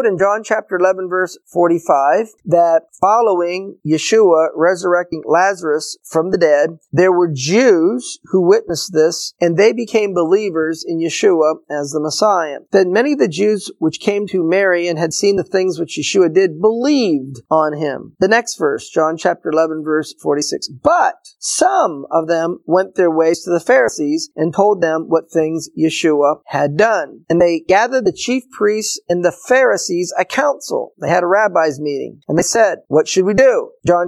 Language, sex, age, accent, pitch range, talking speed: English, male, 40-59, American, 165-220 Hz, 175 wpm